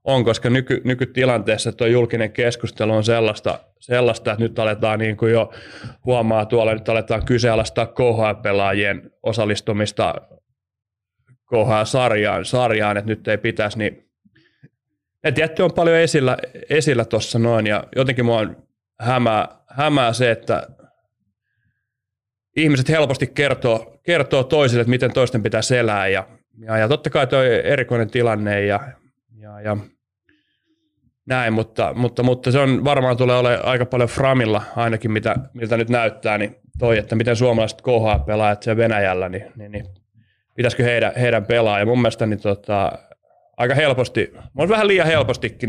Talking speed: 140 wpm